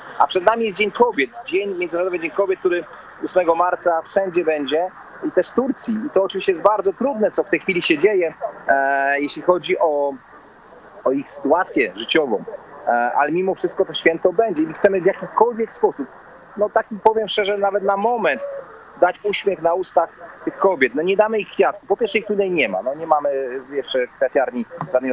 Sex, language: male, Polish